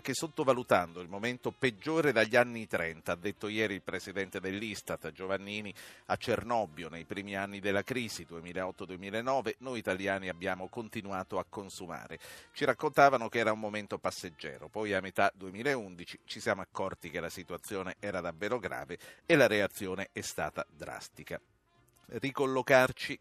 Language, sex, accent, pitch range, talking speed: Italian, male, native, 95-125 Hz, 145 wpm